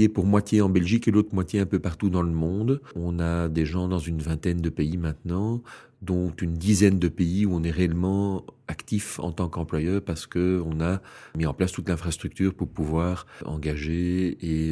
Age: 40-59